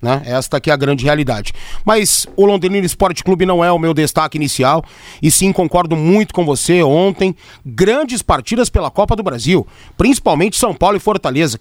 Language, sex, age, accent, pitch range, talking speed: Portuguese, male, 40-59, Brazilian, 180-265 Hz, 185 wpm